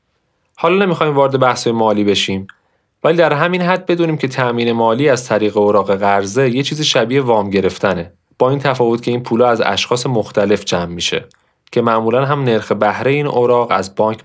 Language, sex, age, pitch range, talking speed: Persian, male, 30-49, 105-135 Hz, 180 wpm